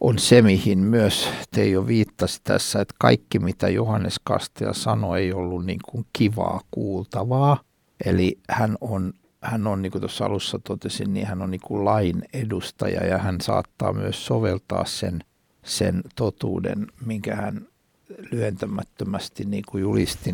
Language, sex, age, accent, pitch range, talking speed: Finnish, male, 60-79, native, 90-110 Hz, 140 wpm